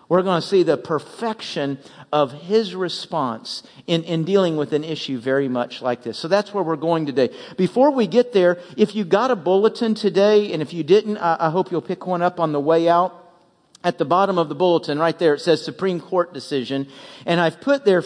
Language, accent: English, American